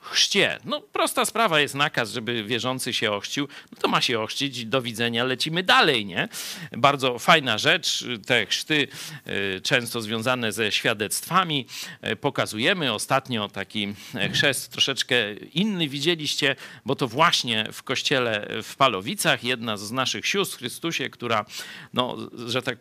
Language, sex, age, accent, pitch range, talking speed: Polish, male, 50-69, native, 120-155 Hz, 135 wpm